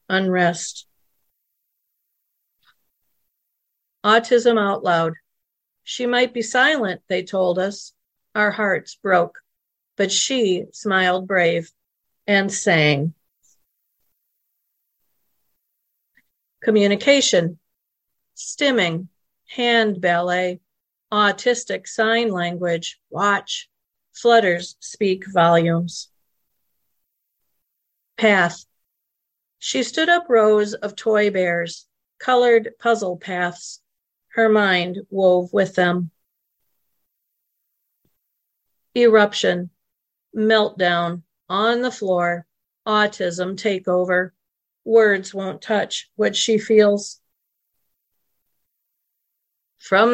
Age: 50-69